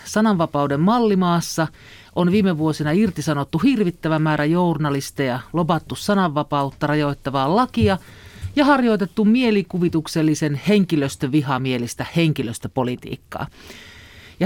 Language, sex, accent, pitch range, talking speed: Finnish, male, native, 140-190 Hz, 80 wpm